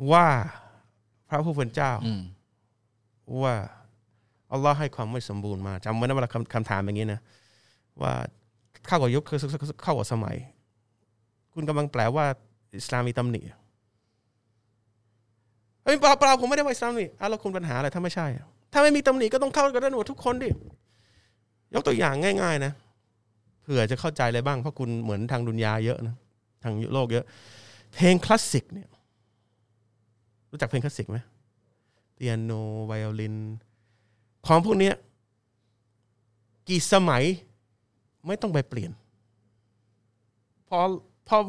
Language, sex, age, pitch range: Thai, male, 20-39, 110-145 Hz